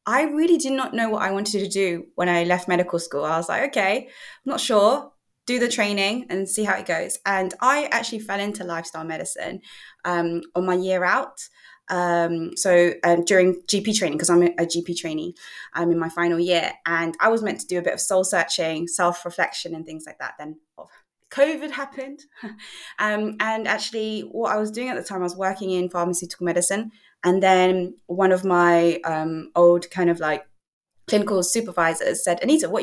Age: 20-39